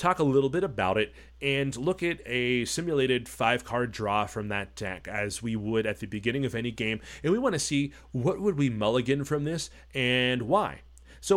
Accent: American